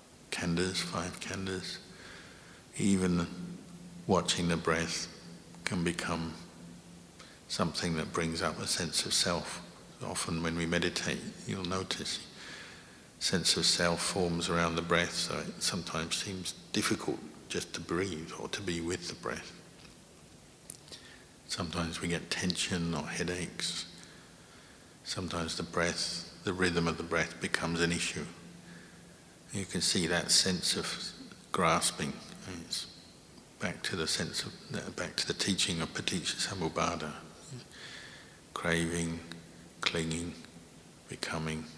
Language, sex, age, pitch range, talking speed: English, male, 60-79, 85-90 Hz, 120 wpm